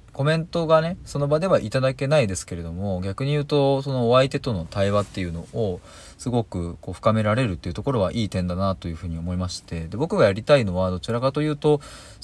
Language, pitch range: Japanese, 90-120 Hz